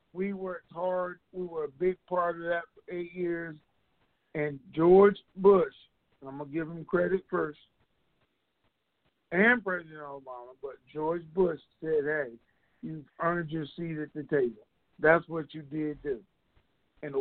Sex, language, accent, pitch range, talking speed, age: male, English, American, 150-180 Hz, 155 wpm, 50-69